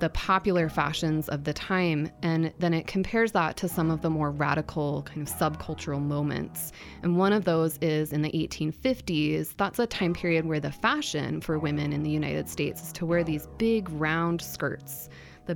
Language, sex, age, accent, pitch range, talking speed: English, female, 20-39, American, 155-190 Hz, 195 wpm